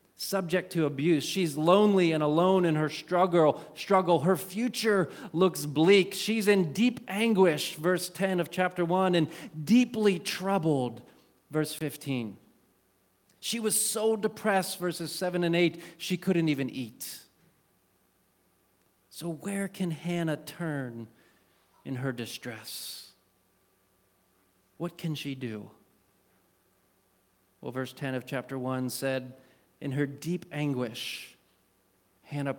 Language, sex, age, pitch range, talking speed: English, male, 40-59, 110-170 Hz, 120 wpm